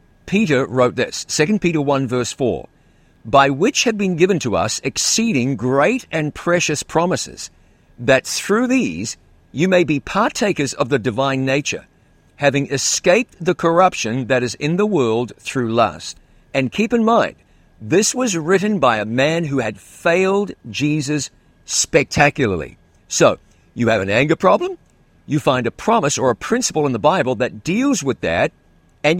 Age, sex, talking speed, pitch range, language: 50-69, male, 160 wpm, 125-185 Hz, English